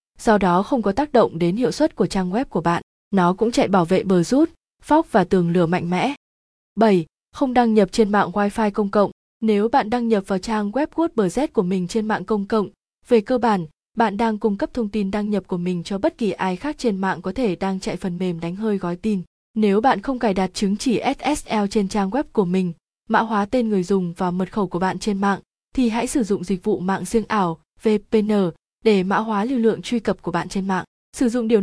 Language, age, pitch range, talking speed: Vietnamese, 20-39, 185-230 Hz, 245 wpm